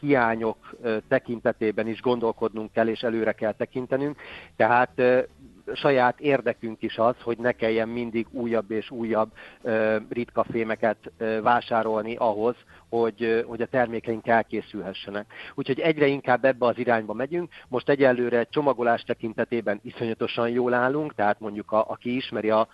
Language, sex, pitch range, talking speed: Hungarian, male, 110-125 Hz, 125 wpm